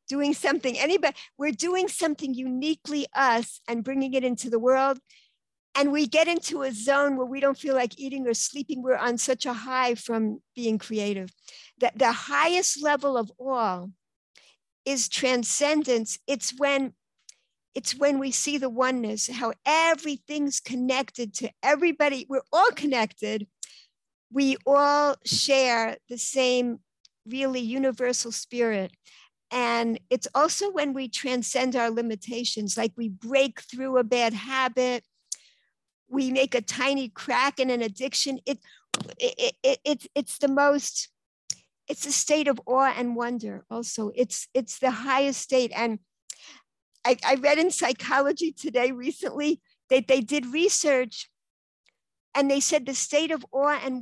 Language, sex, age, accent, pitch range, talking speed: English, female, 60-79, American, 240-285 Hz, 145 wpm